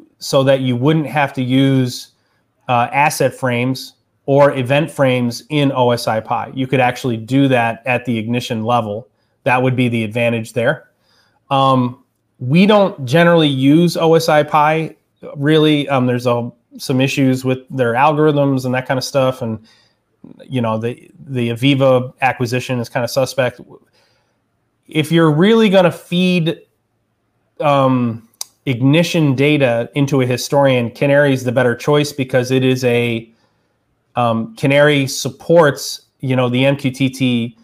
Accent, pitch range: American, 125-145 Hz